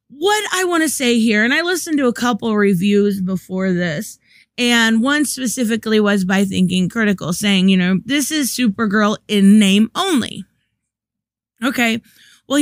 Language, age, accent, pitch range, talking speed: English, 20-39, American, 195-260 Hz, 155 wpm